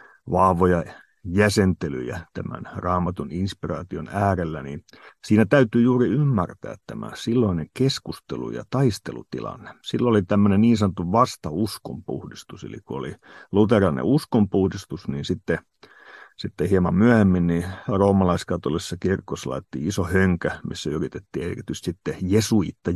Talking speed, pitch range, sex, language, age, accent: 110 wpm, 90-115 Hz, male, Finnish, 50-69, native